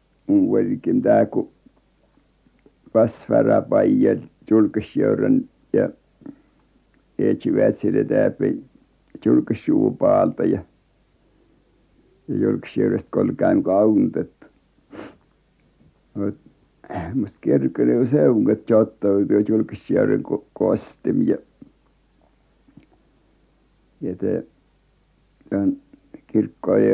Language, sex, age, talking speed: Finnish, male, 60-79, 45 wpm